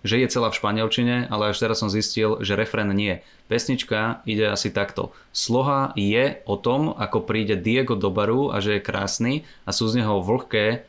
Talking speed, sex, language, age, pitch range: 195 wpm, male, Slovak, 20-39, 105-120 Hz